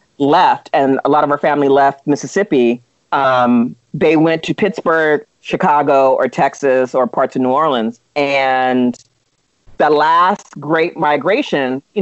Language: English